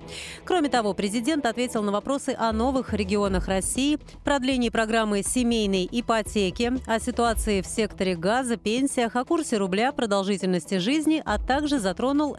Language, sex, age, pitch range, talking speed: Russian, female, 30-49, 200-255 Hz, 135 wpm